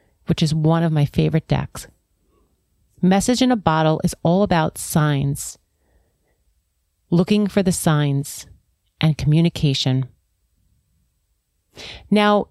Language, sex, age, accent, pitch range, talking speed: English, female, 30-49, American, 135-180 Hz, 105 wpm